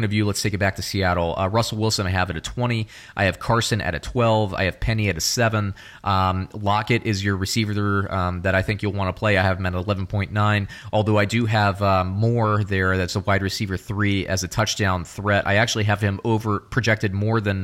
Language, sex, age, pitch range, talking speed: English, male, 30-49, 90-105 Hz, 240 wpm